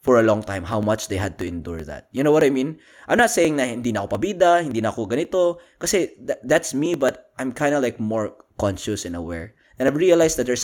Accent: native